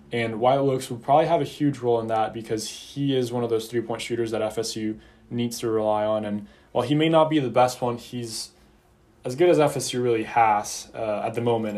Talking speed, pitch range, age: 230 wpm, 115-135 Hz, 10-29